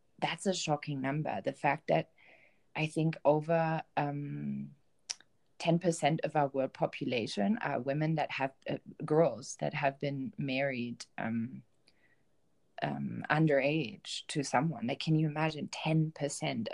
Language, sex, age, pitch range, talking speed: English, female, 30-49, 135-170 Hz, 130 wpm